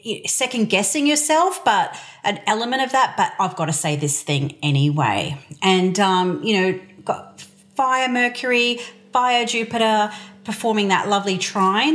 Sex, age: female, 40-59